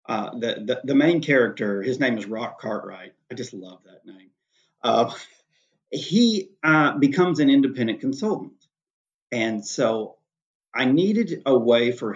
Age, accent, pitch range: 40-59, American, 105-145 Hz